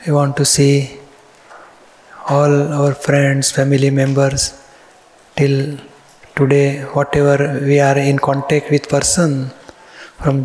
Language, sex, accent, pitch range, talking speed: Gujarati, male, native, 140-150 Hz, 110 wpm